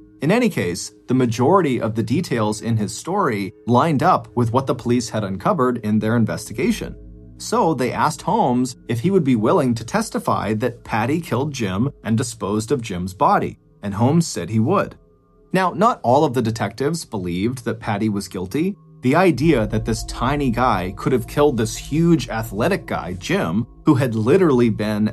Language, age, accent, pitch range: English, 30-49, American, 110-145 Hz